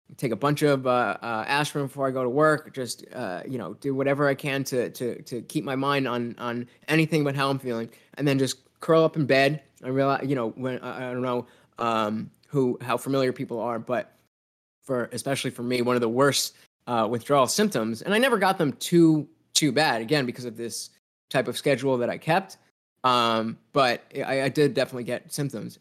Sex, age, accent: male, 20-39, American